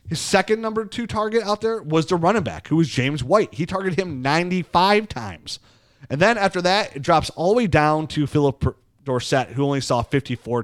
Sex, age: male, 30-49